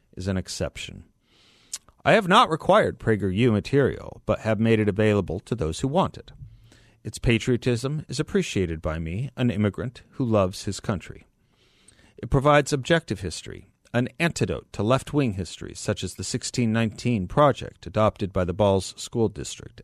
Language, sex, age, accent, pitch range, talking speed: English, male, 40-59, American, 100-130 Hz, 155 wpm